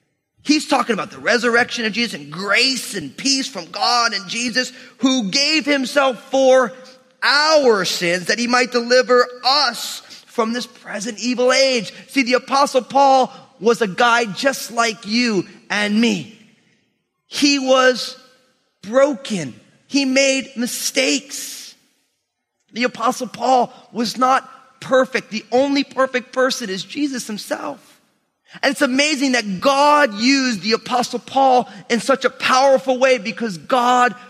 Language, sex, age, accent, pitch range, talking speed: English, male, 30-49, American, 195-260 Hz, 135 wpm